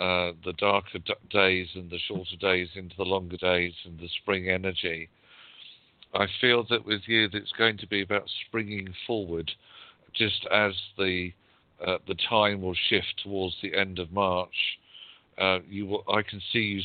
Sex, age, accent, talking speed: male, 50-69, British, 180 wpm